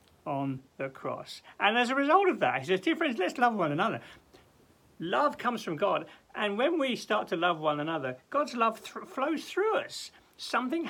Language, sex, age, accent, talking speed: English, male, 60-79, British, 195 wpm